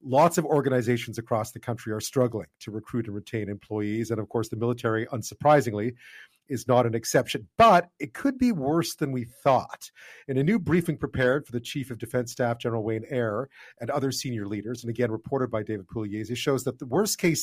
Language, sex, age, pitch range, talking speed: English, male, 40-59, 115-145 Hz, 210 wpm